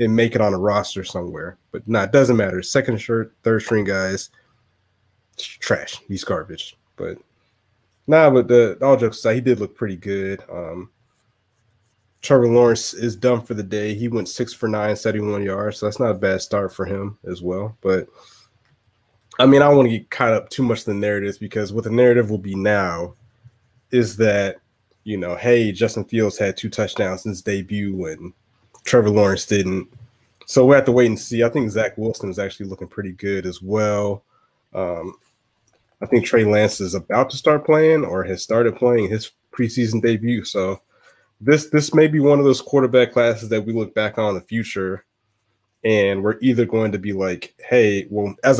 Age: 20-39